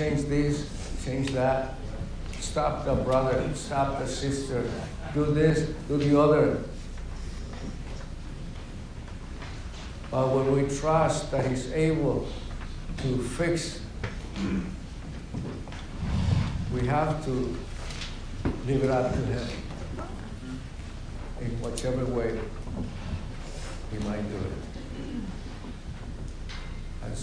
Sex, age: male, 60-79